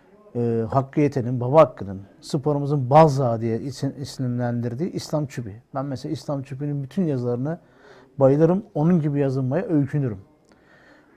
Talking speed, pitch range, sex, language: 105 wpm, 140-185 Hz, male, Turkish